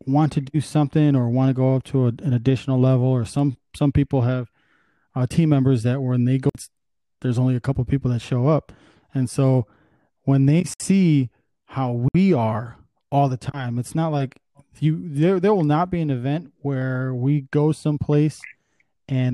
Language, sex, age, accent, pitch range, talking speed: English, male, 20-39, American, 125-145 Hz, 195 wpm